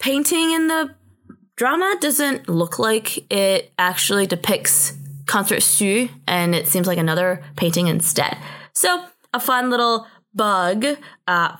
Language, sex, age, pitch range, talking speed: English, female, 20-39, 180-265 Hz, 130 wpm